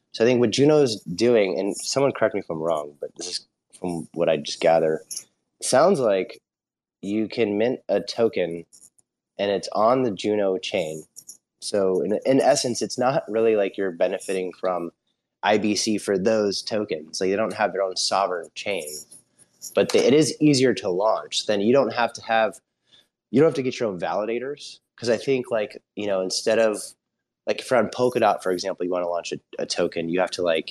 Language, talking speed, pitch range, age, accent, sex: English, 205 wpm, 95-130 Hz, 30-49, American, male